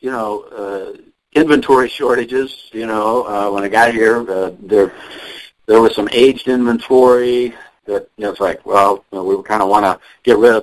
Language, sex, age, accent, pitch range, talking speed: English, male, 50-69, American, 100-130 Hz, 200 wpm